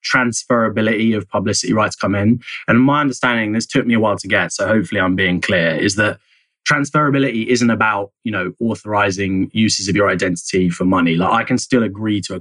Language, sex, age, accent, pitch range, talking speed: English, male, 20-39, British, 90-115 Hz, 205 wpm